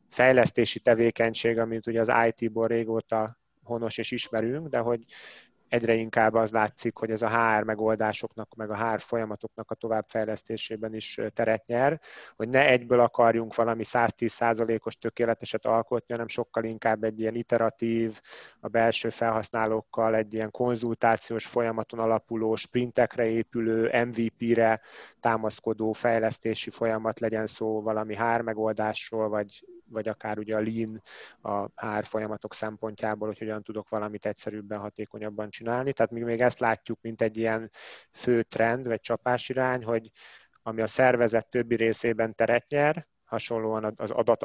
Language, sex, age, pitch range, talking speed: Hungarian, male, 30-49, 110-115 Hz, 135 wpm